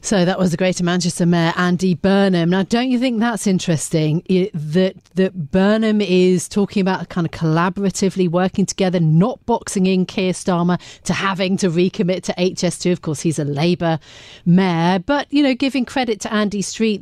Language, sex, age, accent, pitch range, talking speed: English, female, 40-59, British, 170-195 Hz, 185 wpm